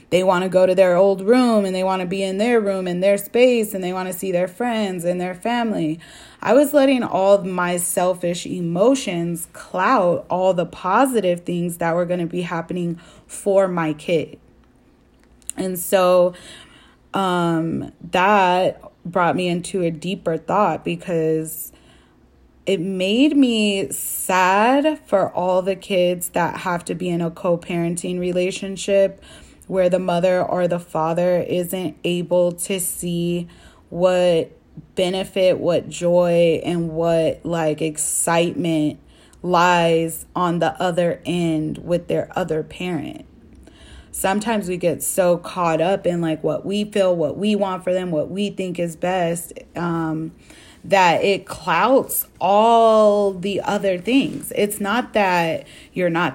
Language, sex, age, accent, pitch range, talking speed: English, female, 20-39, American, 170-195 Hz, 150 wpm